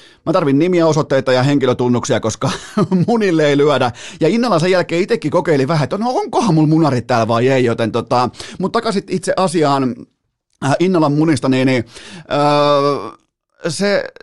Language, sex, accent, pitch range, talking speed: Finnish, male, native, 130-180 Hz, 135 wpm